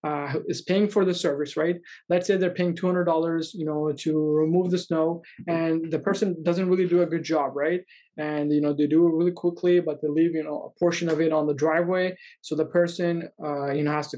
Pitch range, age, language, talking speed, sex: 155-180 Hz, 20-39, English, 245 wpm, male